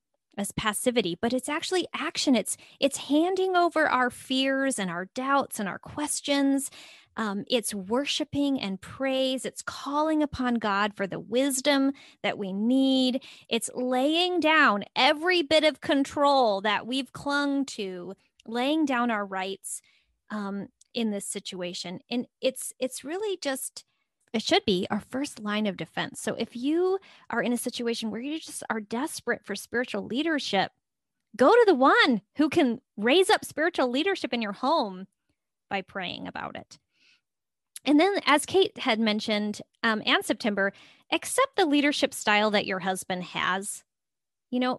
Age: 20-39